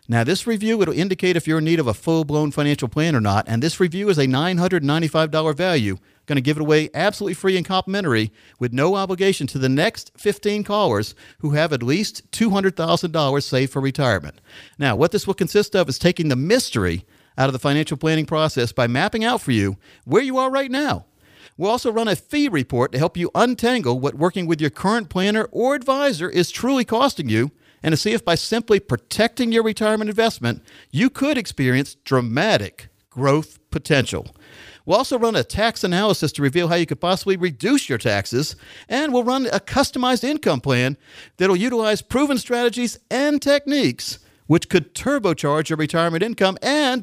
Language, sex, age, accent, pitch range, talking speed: English, male, 50-69, American, 140-225 Hz, 190 wpm